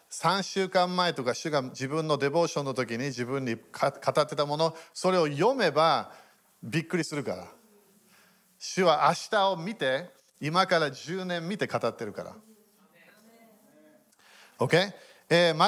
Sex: male